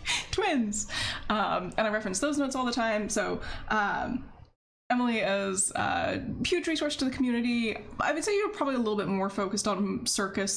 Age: 20-39